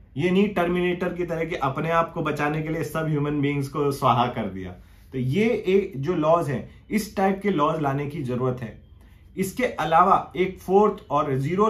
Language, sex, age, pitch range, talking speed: English, male, 30-49, 125-175 Hz, 200 wpm